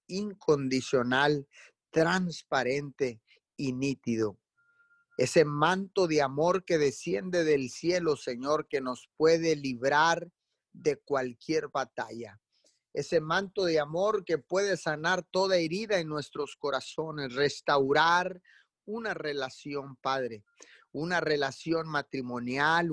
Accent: Mexican